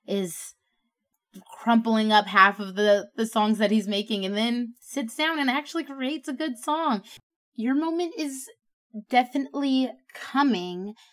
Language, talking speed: English, 140 wpm